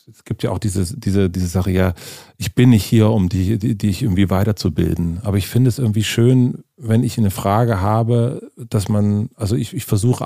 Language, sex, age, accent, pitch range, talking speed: German, male, 40-59, German, 100-120 Hz, 215 wpm